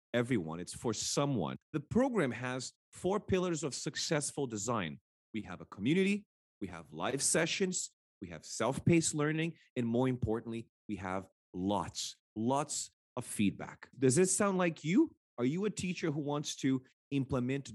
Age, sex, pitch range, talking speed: 30-49, male, 105-155 Hz, 155 wpm